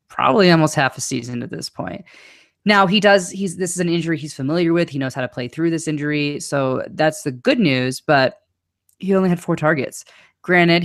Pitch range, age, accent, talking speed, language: 130-175 Hz, 20-39, American, 215 wpm, English